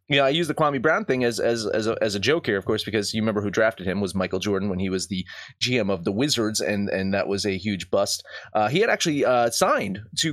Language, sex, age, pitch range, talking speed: English, male, 30-49, 110-150 Hz, 290 wpm